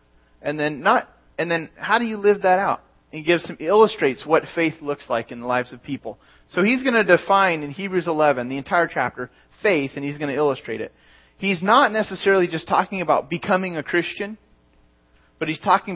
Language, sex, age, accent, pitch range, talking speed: English, male, 30-49, American, 130-195 Hz, 205 wpm